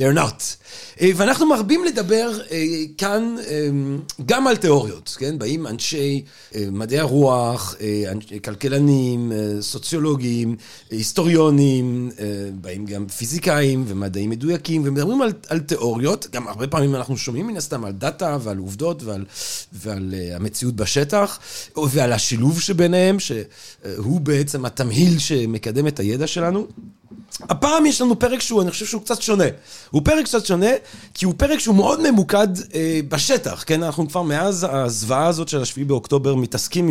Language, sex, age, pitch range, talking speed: Hebrew, male, 40-59, 125-185 Hz, 135 wpm